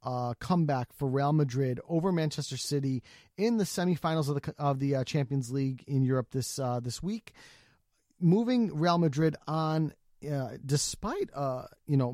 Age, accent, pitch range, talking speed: 30-49, American, 135-185 Hz, 165 wpm